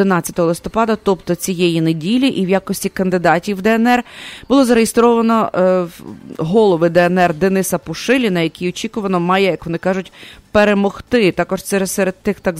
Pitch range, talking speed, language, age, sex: 175-215 Hz, 140 wpm, English, 30-49, female